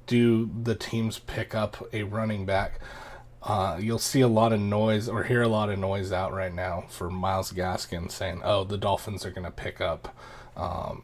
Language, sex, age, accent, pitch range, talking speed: English, male, 30-49, American, 100-120 Hz, 200 wpm